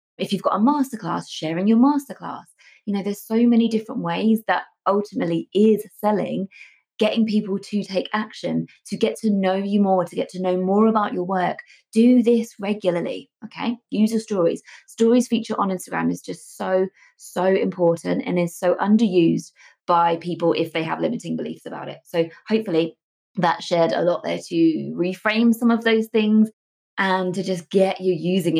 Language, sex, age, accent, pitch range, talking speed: English, female, 20-39, British, 180-225 Hz, 180 wpm